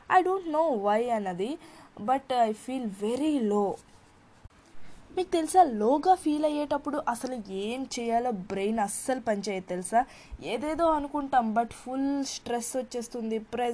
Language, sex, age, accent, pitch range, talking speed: Telugu, female, 20-39, native, 210-280 Hz, 175 wpm